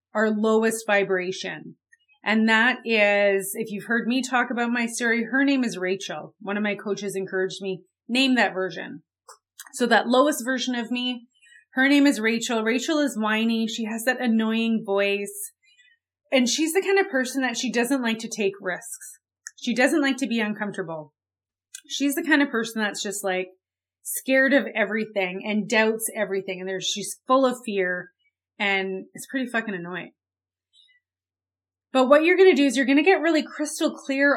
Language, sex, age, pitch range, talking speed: English, female, 30-49, 195-260 Hz, 175 wpm